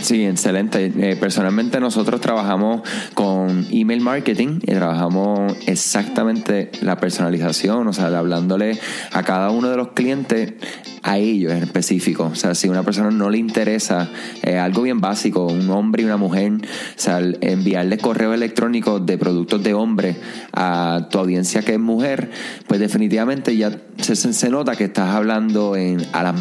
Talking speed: 165 wpm